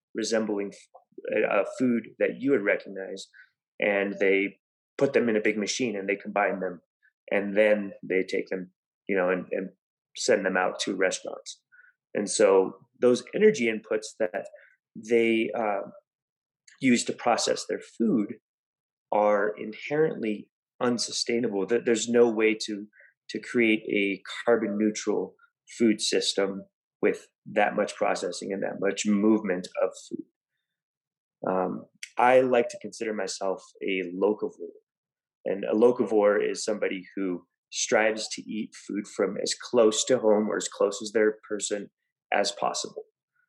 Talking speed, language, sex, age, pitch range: 140 wpm, English, male, 30-49, 105-125 Hz